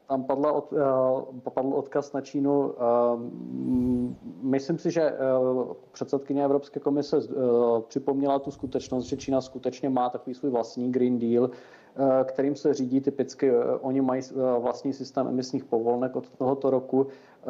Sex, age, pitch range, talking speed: male, 40-59, 125-135 Hz, 125 wpm